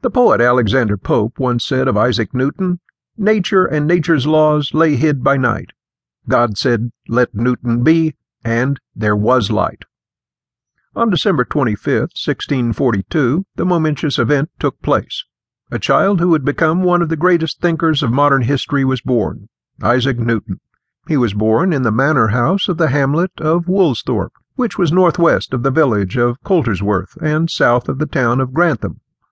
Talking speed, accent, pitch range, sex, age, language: 160 wpm, American, 120-160 Hz, male, 50-69, English